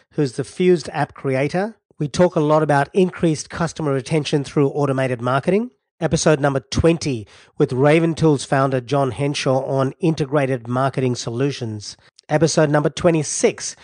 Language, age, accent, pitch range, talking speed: English, 40-59, Australian, 130-155 Hz, 140 wpm